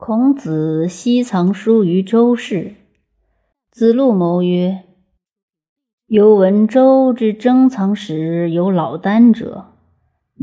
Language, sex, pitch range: Chinese, female, 170-215 Hz